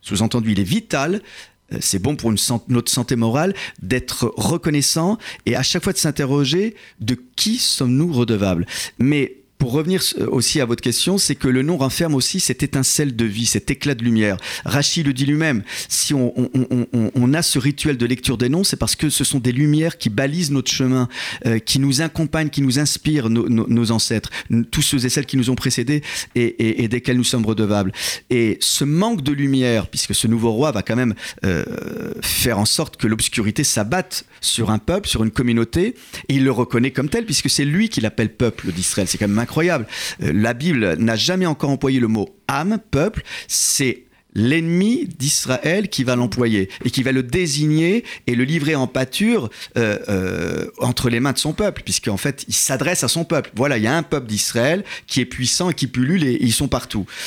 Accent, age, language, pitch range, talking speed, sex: French, 40-59, French, 115-150 Hz, 205 wpm, male